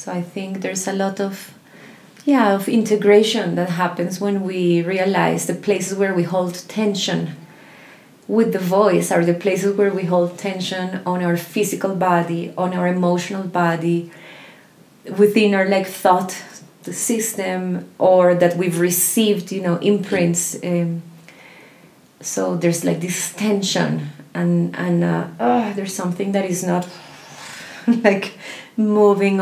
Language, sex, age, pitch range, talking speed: English, female, 30-49, 175-200 Hz, 140 wpm